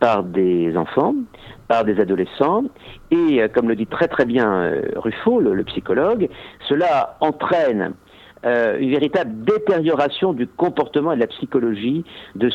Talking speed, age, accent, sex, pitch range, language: 145 wpm, 50-69, French, male, 115-170 Hz, French